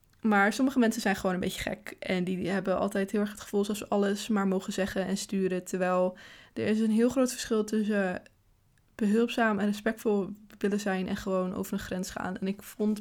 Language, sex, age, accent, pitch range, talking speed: Dutch, female, 20-39, Dutch, 185-230 Hz, 215 wpm